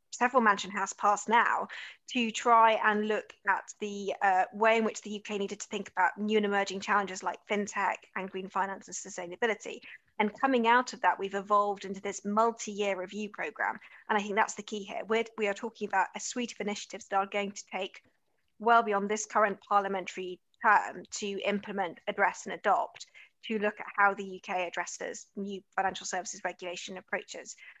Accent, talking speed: British, 190 wpm